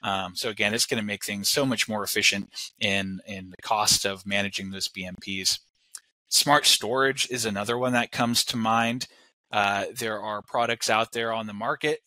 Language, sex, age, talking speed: English, male, 20-39, 190 wpm